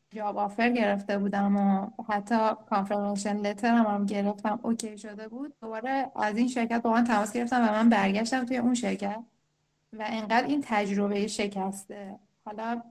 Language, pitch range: Persian, 200-235 Hz